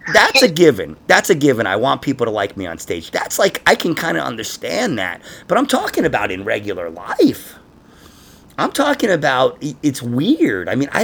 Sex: male